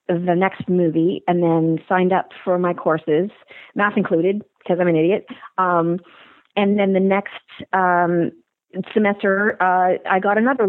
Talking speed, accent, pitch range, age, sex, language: 150 wpm, American, 180-210 Hz, 40-59, female, English